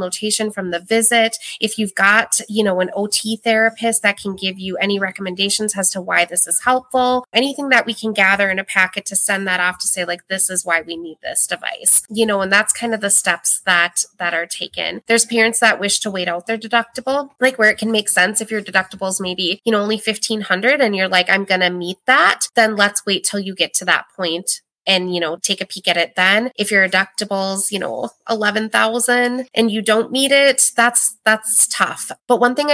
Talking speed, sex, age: 230 wpm, female, 20-39